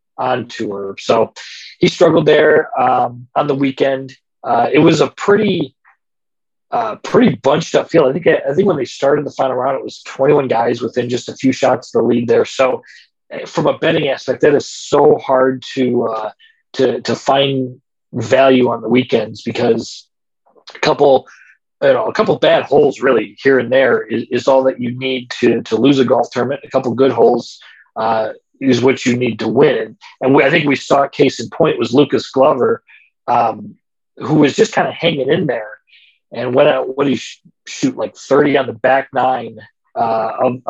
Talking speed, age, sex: 200 wpm, 40-59, male